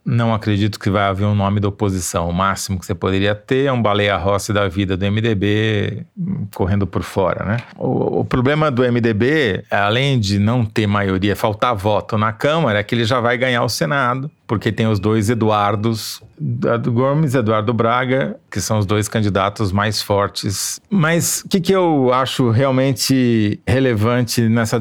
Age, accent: 40-59, Brazilian